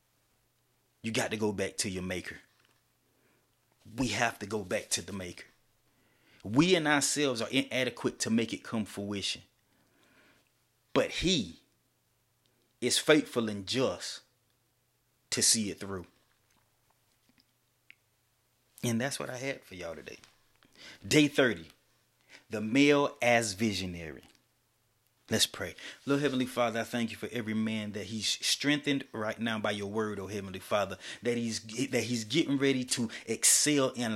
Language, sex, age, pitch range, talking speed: English, male, 30-49, 110-135 Hz, 140 wpm